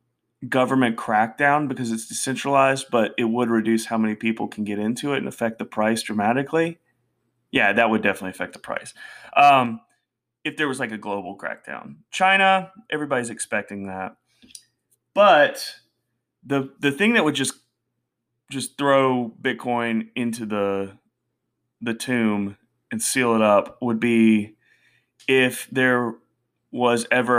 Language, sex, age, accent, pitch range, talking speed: English, male, 30-49, American, 115-130 Hz, 140 wpm